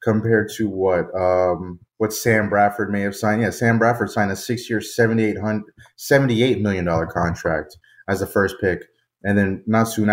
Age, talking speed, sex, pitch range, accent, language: 30-49, 160 wpm, male, 95-115 Hz, American, English